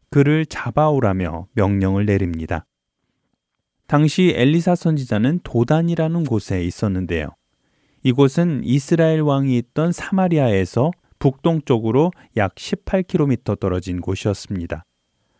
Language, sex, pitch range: Korean, male, 100-145 Hz